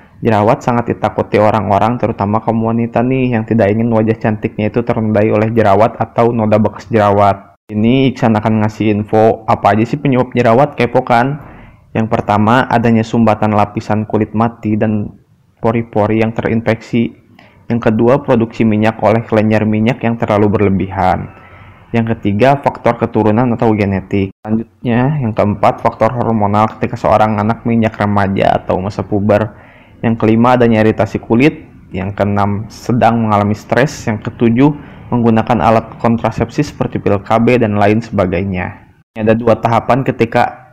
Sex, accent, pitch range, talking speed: male, native, 105-120 Hz, 145 wpm